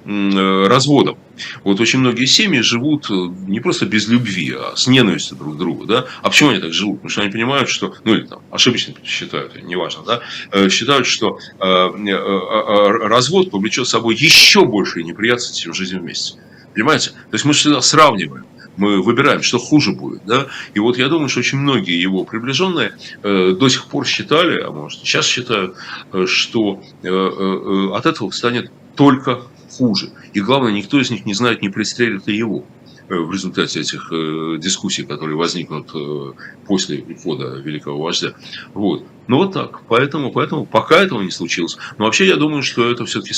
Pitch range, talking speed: 90-125 Hz, 170 wpm